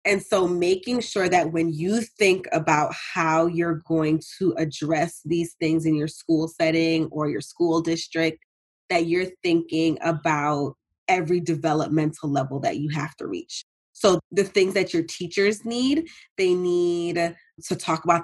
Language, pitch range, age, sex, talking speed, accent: English, 155-175 Hz, 20-39, female, 160 wpm, American